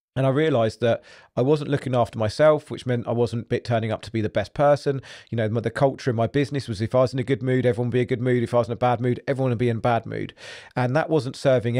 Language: English